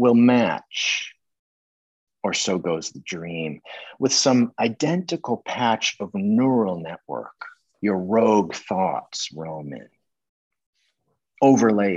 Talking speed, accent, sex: 100 wpm, American, male